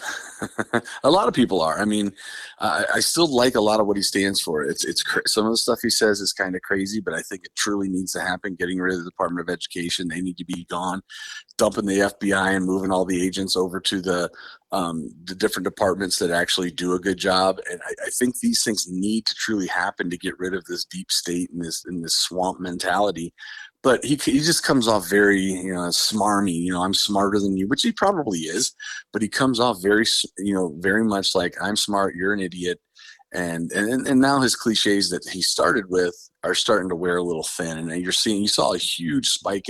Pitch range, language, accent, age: 90-100 Hz, English, American, 40-59